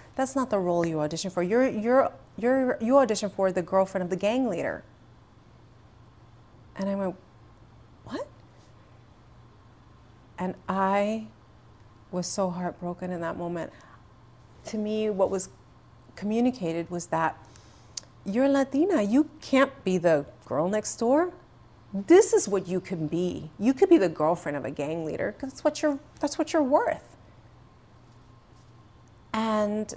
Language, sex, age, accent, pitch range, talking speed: English, female, 30-49, American, 160-255 Hz, 140 wpm